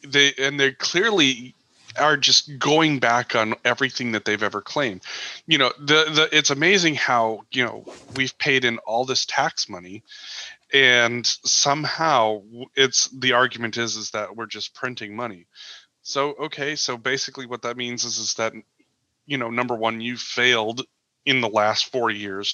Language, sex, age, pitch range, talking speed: English, male, 30-49, 110-135 Hz, 170 wpm